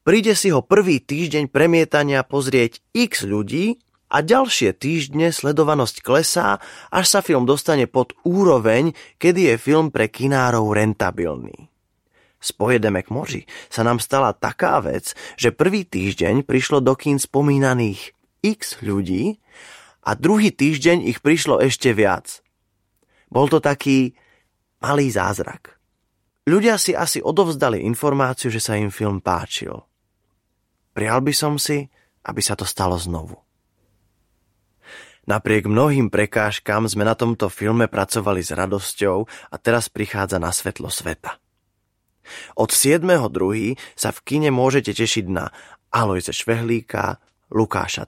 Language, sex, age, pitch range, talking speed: Slovak, male, 20-39, 105-145 Hz, 125 wpm